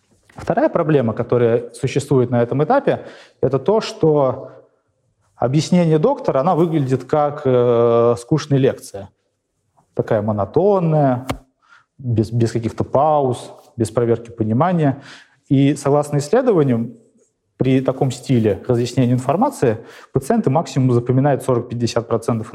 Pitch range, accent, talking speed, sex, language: 115-145 Hz, native, 105 wpm, male, Russian